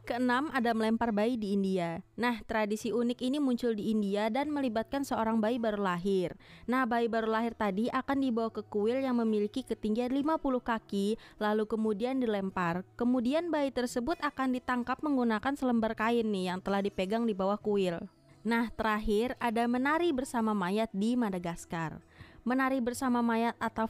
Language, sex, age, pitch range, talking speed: Indonesian, female, 20-39, 205-250 Hz, 160 wpm